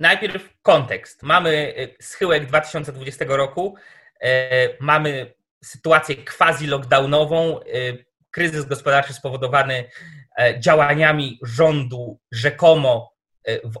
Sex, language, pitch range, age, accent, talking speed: male, Polish, 140-185 Hz, 20-39, native, 70 wpm